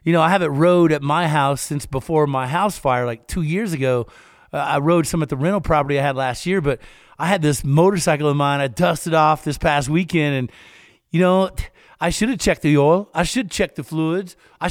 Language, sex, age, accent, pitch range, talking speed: English, male, 50-69, American, 155-195 Hz, 235 wpm